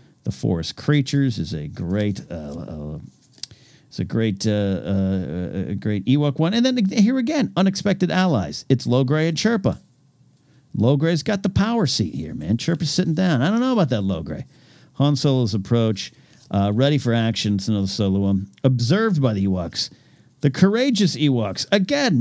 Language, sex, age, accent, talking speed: English, male, 50-69, American, 175 wpm